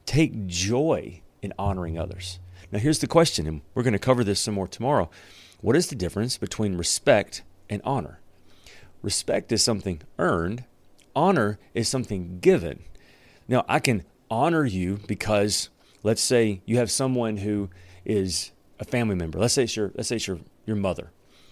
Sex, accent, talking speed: male, American, 155 wpm